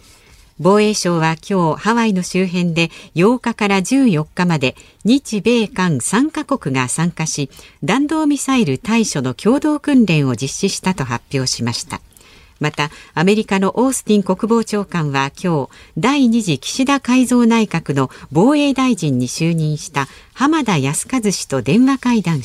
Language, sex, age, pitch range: Japanese, female, 50-69, 145-235 Hz